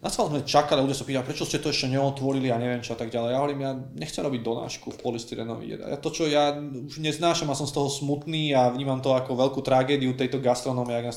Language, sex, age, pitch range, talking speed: Slovak, male, 20-39, 120-140 Hz, 260 wpm